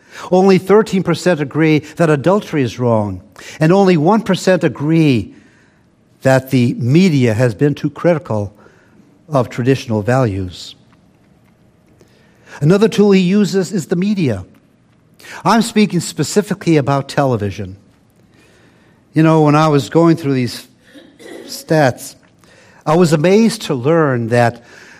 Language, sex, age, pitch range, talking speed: English, male, 60-79, 130-180 Hz, 115 wpm